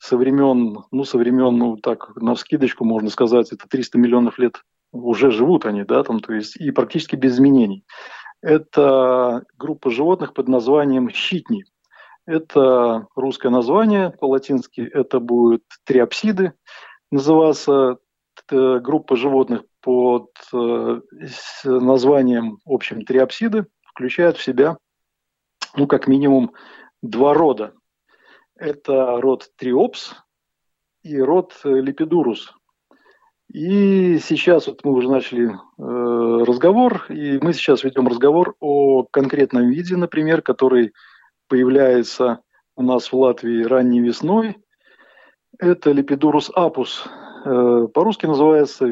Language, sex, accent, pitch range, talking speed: Russian, male, native, 125-160 Hz, 110 wpm